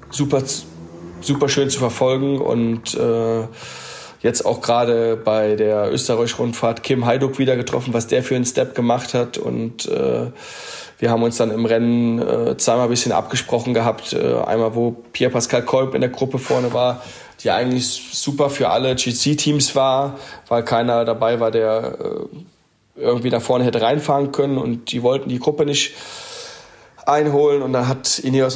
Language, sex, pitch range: German, male, 115-130 Hz